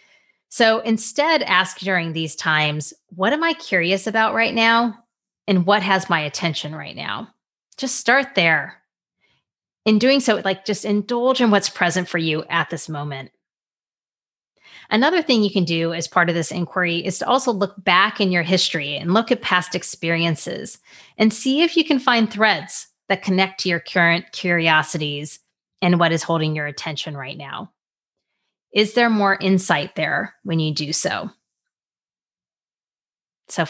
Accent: American